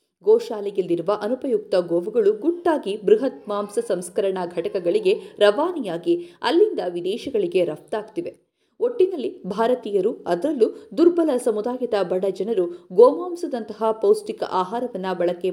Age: 50-69